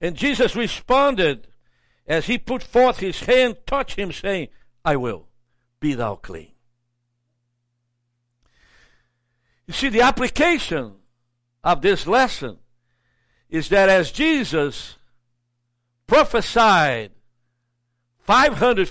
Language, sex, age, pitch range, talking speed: English, male, 60-79, 120-195 Hz, 95 wpm